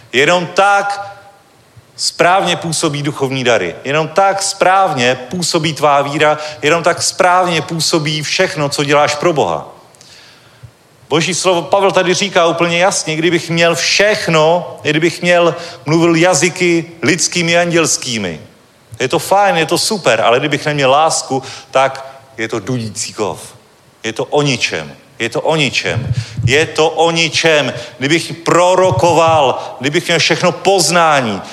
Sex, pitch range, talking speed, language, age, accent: male, 145-175 Hz, 130 wpm, Czech, 40-59, native